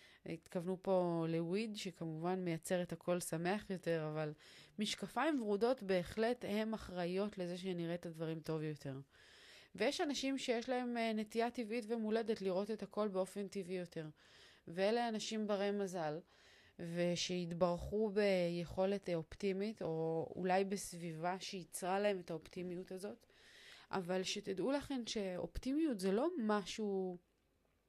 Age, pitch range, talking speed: 30-49, 175-220 Hz, 120 wpm